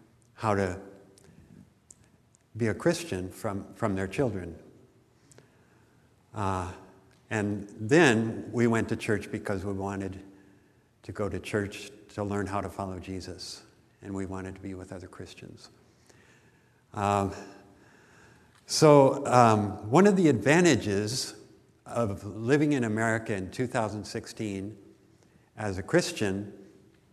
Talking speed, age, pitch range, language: 115 wpm, 60-79, 100-120 Hz, English